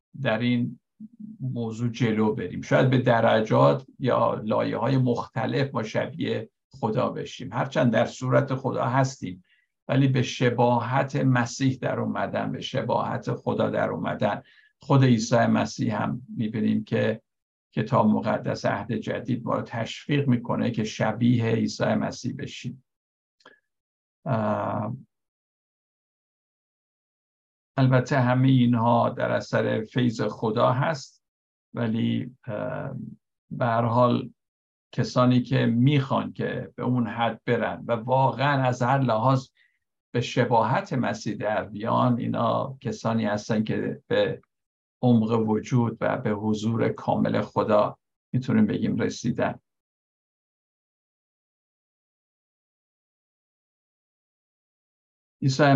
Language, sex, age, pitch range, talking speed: Persian, male, 60-79, 115-130 Hz, 100 wpm